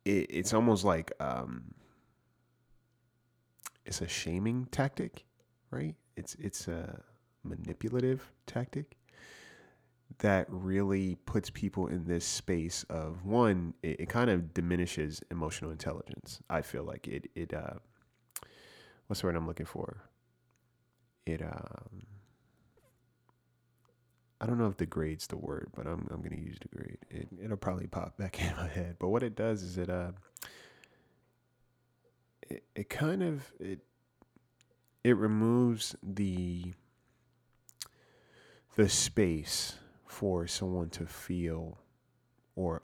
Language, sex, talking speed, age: English, male, 125 wpm, 20-39